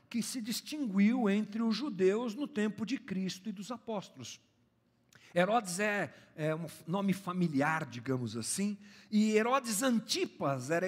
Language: Portuguese